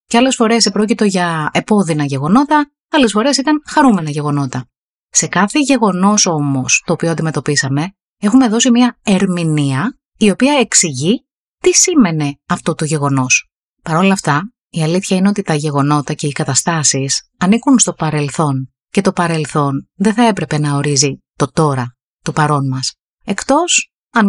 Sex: female